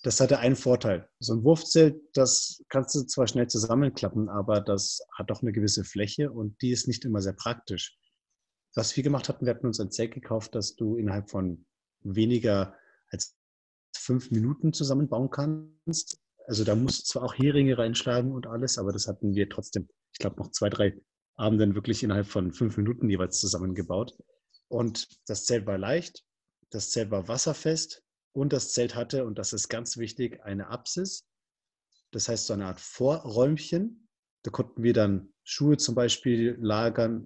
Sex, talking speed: male, 175 wpm